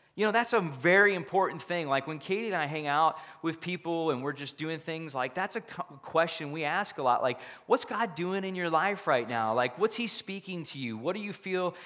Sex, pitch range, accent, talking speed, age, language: male, 140-170 Hz, American, 245 wpm, 30-49, English